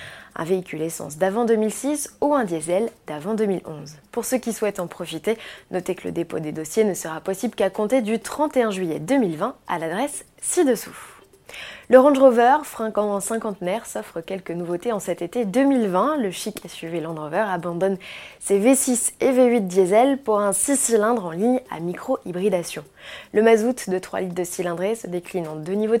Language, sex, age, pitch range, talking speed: French, female, 20-39, 175-230 Hz, 180 wpm